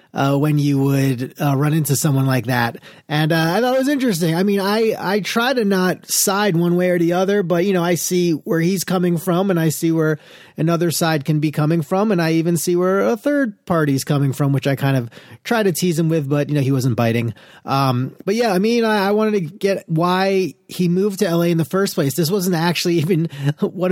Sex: male